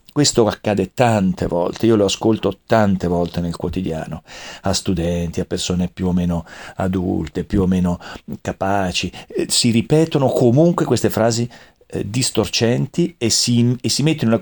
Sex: male